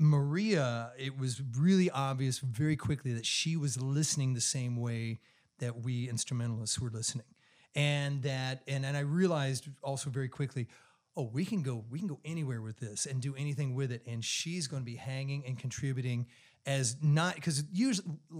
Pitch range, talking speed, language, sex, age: 125-150 Hz, 180 wpm, English, male, 30-49